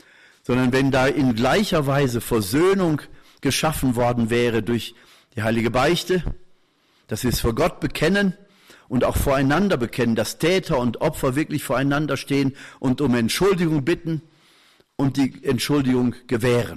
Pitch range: 120-150 Hz